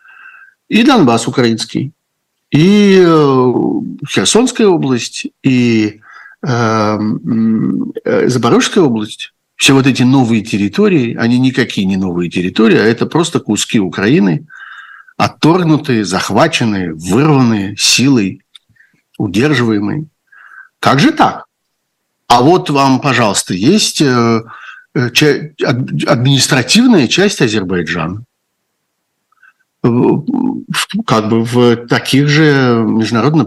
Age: 50-69